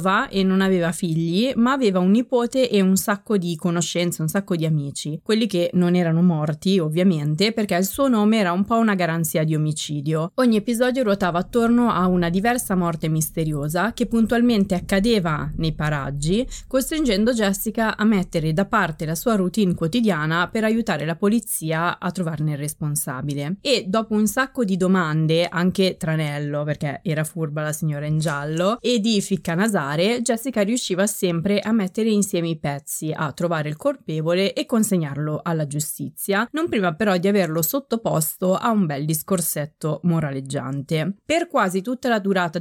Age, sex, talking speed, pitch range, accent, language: 20-39, female, 165 wpm, 160-215 Hz, native, Italian